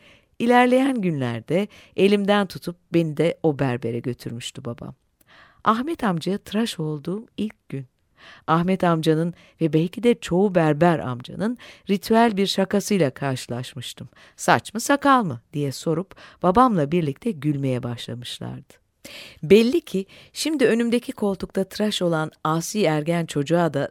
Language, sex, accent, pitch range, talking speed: Turkish, female, native, 140-200 Hz, 125 wpm